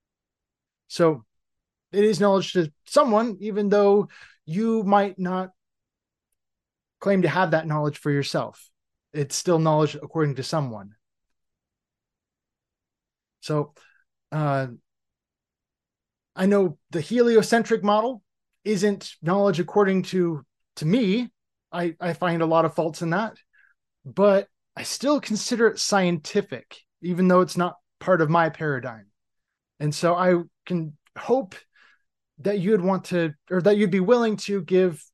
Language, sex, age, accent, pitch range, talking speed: English, male, 20-39, American, 150-205 Hz, 130 wpm